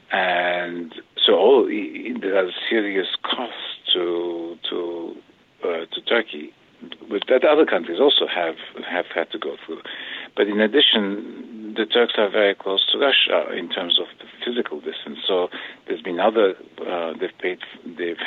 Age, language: 50-69, English